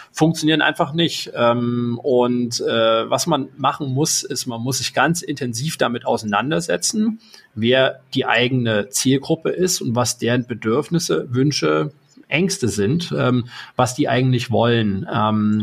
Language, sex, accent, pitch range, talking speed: German, male, German, 115-145 Hz, 125 wpm